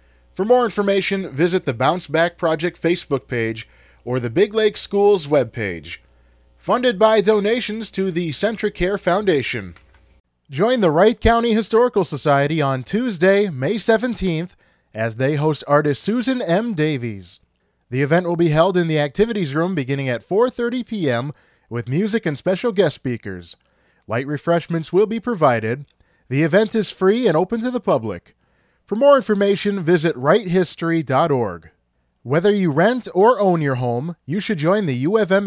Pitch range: 130-205 Hz